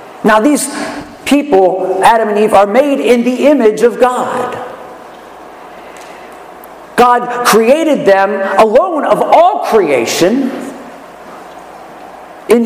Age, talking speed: 50-69, 100 wpm